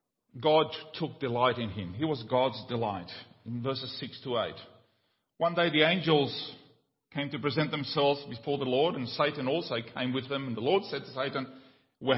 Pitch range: 130-195 Hz